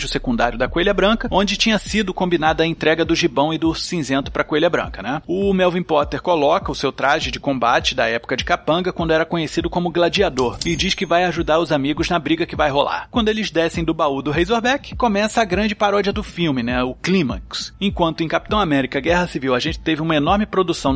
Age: 30-49